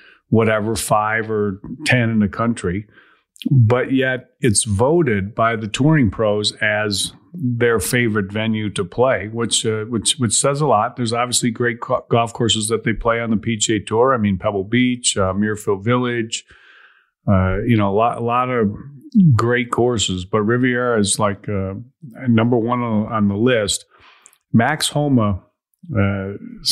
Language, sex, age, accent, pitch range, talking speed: English, male, 50-69, American, 105-125 Hz, 155 wpm